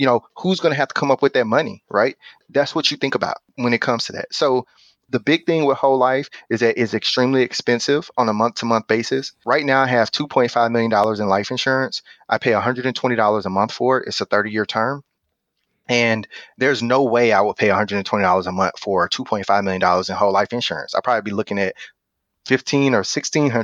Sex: male